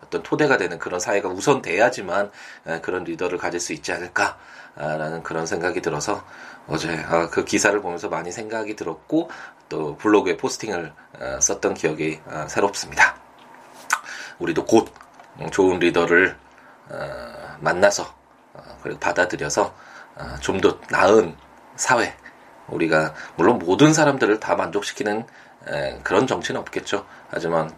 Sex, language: male, Korean